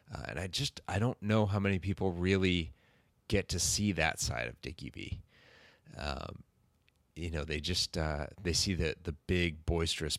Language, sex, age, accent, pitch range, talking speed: English, male, 30-49, American, 80-95 Hz, 185 wpm